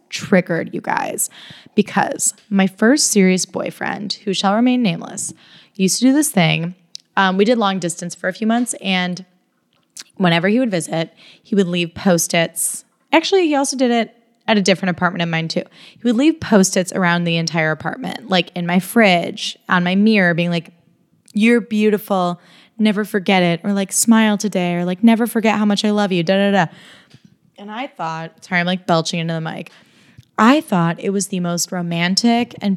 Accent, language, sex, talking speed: American, English, female, 190 wpm